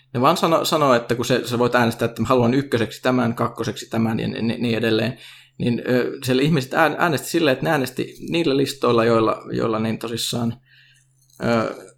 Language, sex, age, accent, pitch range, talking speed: Finnish, male, 20-39, native, 115-135 Hz, 190 wpm